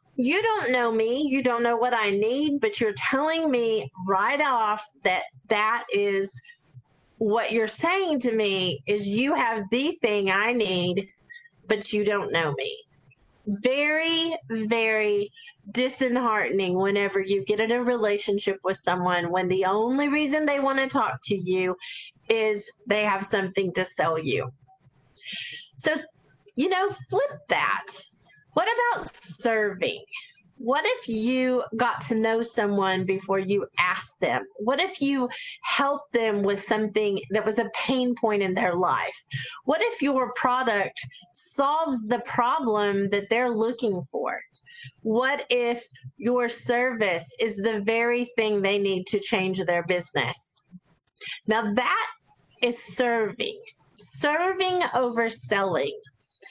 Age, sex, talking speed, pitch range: 30-49, female, 135 wpm, 200-260 Hz